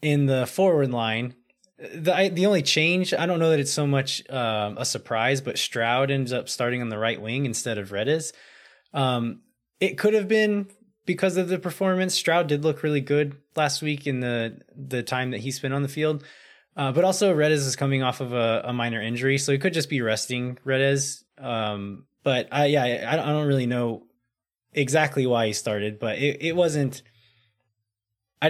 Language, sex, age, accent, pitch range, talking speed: English, male, 20-39, American, 110-150 Hz, 200 wpm